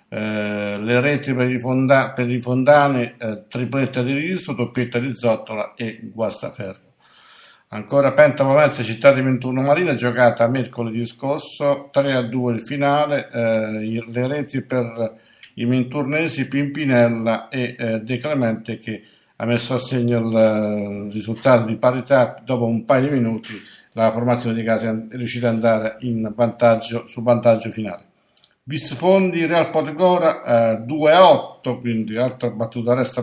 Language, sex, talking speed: Italian, male, 140 wpm